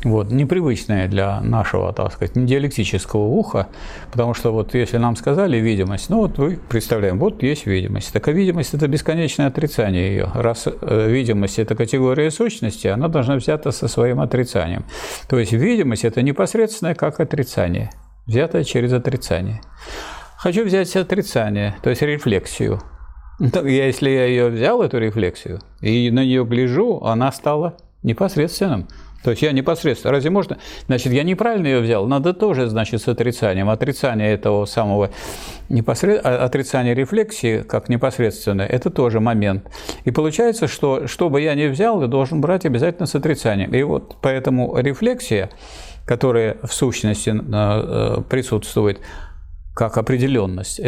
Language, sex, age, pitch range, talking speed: Russian, male, 50-69, 105-140 Hz, 140 wpm